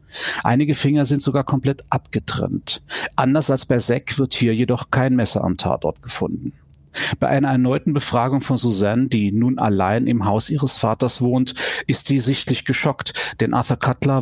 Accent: German